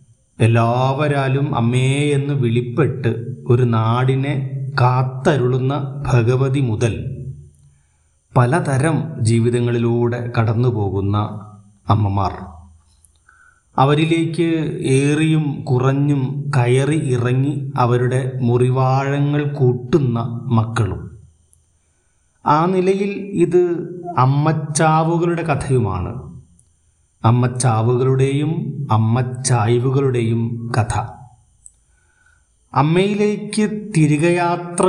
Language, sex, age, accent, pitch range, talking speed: Malayalam, male, 30-49, native, 120-145 Hz, 55 wpm